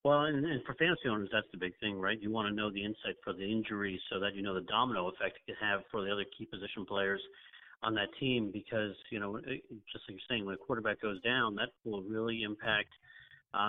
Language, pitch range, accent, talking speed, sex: English, 110-135 Hz, American, 245 wpm, male